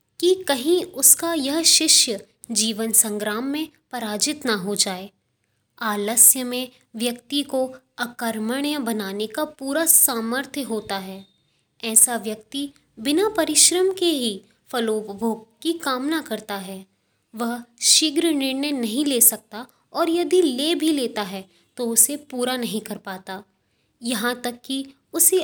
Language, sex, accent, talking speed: Hindi, female, native, 130 wpm